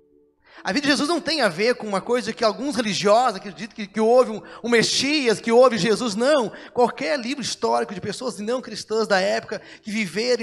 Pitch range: 165-250 Hz